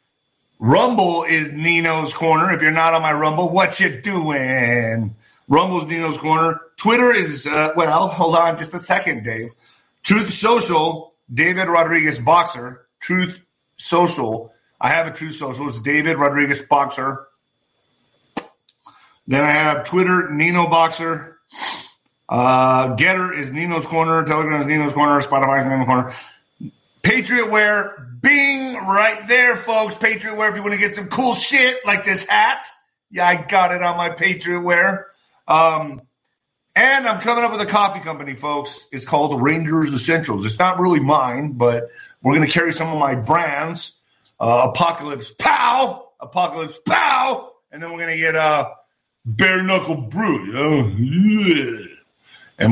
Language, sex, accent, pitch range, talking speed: English, male, American, 145-190 Hz, 150 wpm